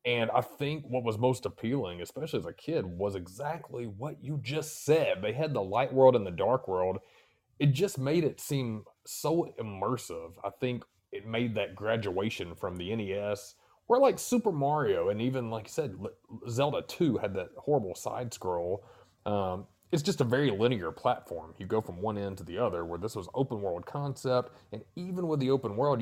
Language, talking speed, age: English, 195 wpm, 30-49